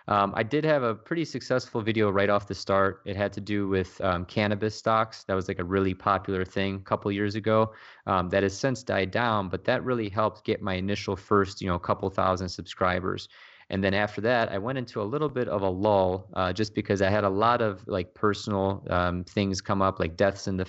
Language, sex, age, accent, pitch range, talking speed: English, male, 30-49, American, 95-110 Hz, 235 wpm